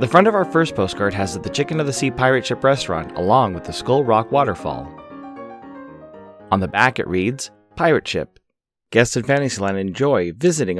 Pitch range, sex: 100-140 Hz, male